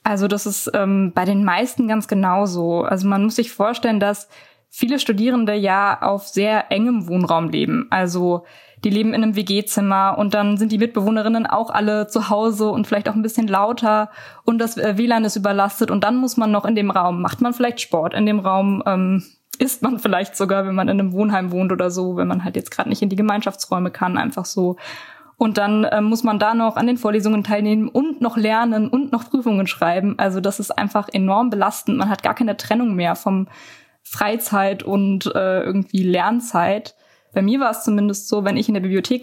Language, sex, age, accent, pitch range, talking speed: German, female, 20-39, German, 195-230 Hz, 210 wpm